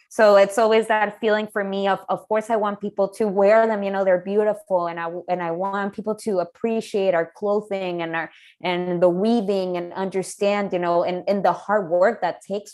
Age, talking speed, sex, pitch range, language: 20-39, 215 wpm, female, 180-220 Hz, English